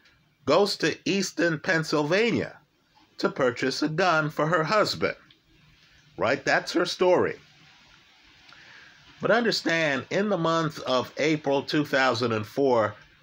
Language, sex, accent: English, male, American